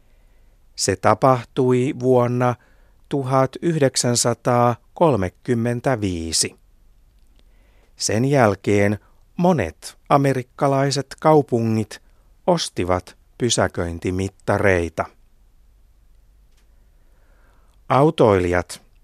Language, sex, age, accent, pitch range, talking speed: Finnish, male, 60-79, native, 95-125 Hz, 40 wpm